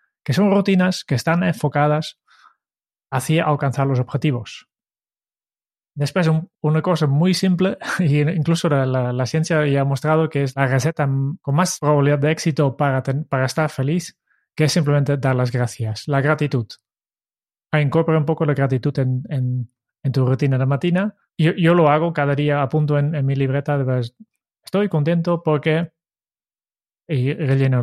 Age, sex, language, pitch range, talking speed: 20-39, male, Spanish, 130-165 Hz, 165 wpm